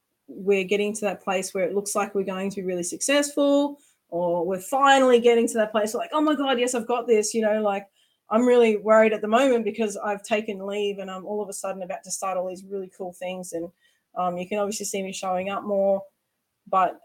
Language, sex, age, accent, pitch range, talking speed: English, female, 20-39, Australian, 185-220 Hz, 245 wpm